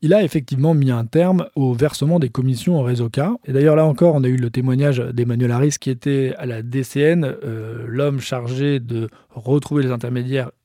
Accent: French